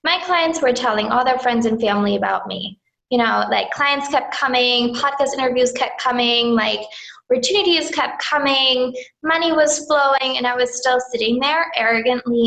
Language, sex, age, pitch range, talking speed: English, female, 20-39, 230-275 Hz, 170 wpm